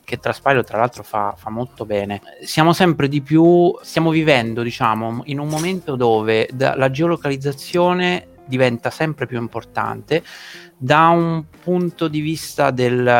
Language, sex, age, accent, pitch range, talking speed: Italian, male, 30-49, native, 110-135 Hz, 140 wpm